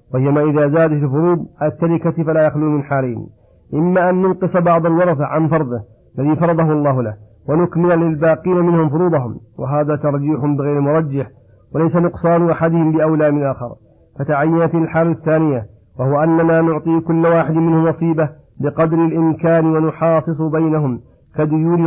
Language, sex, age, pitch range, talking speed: Arabic, male, 50-69, 145-165 Hz, 135 wpm